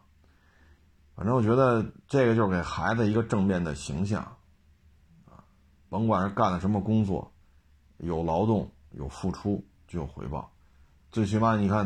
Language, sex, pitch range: Chinese, male, 75-105 Hz